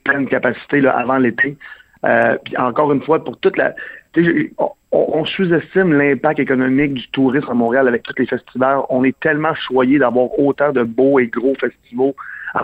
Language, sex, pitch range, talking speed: French, male, 125-145 Hz, 180 wpm